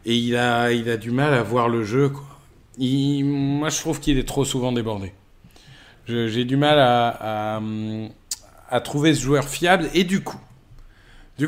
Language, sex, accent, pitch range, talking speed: French, male, French, 115-150 Hz, 190 wpm